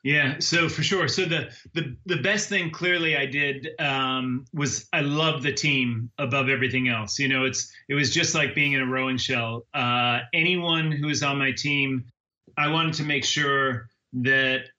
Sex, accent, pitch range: male, American, 125-145 Hz